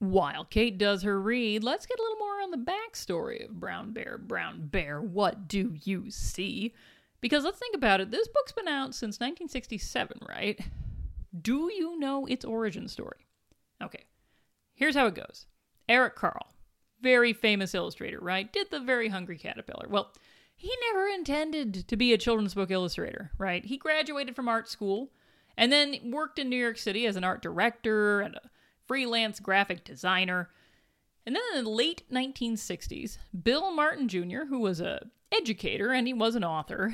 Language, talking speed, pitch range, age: English, 170 wpm, 195-265 Hz, 40-59